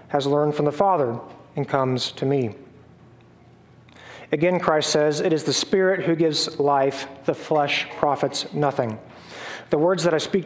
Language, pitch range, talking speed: English, 130-155 Hz, 160 wpm